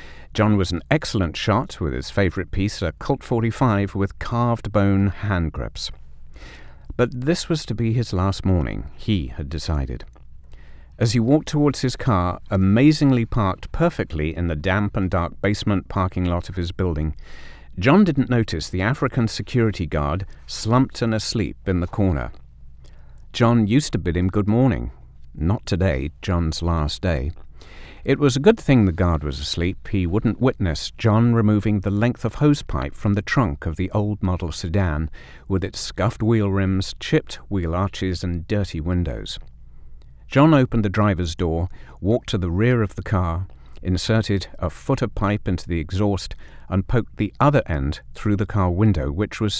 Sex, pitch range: male, 80-110 Hz